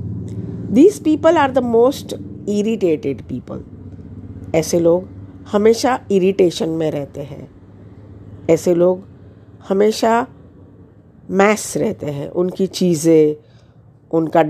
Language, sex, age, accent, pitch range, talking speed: Hindi, female, 50-69, native, 130-205 Hz, 95 wpm